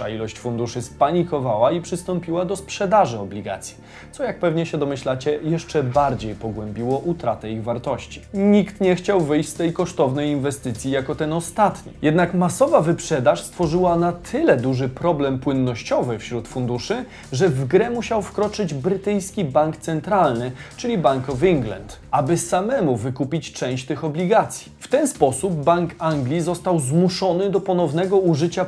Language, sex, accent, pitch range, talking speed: Polish, male, native, 130-185 Hz, 145 wpm